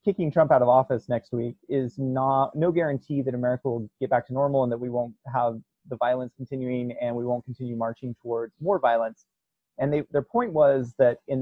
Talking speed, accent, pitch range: 205 wpm, American, 120-150 Hz